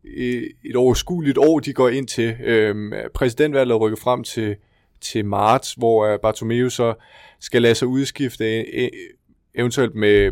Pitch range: 110-130 Hz